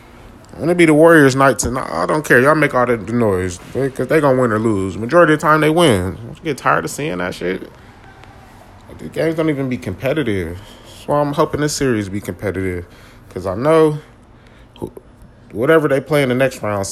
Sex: male